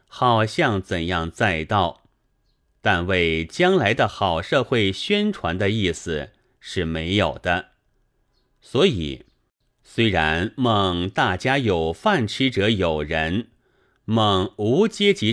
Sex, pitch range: male, 90-130 Hz